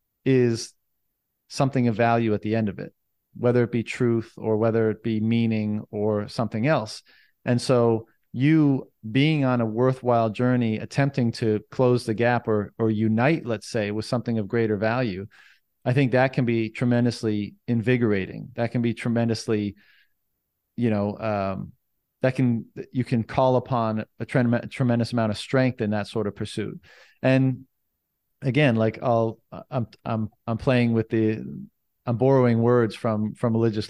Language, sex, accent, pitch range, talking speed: English, male, American, 110-125 Hz, 165 wpm